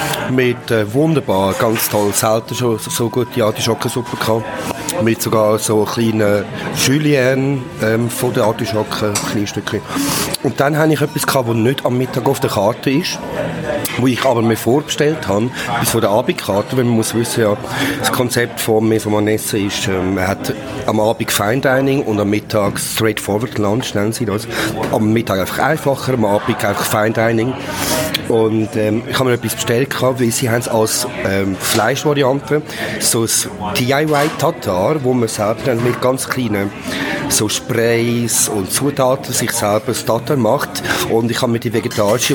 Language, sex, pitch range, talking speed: German, male, 110-135 Hz, 170 wpm